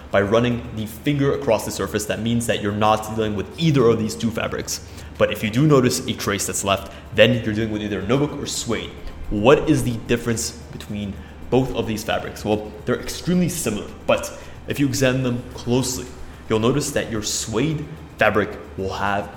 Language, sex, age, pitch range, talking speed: English, male, 20-39, 105-125 Hz, 195 wpm